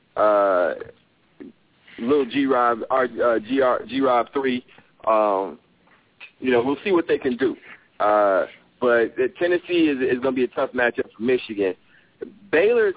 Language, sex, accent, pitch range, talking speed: English, male, American, 120-165 Hz, 150 wpm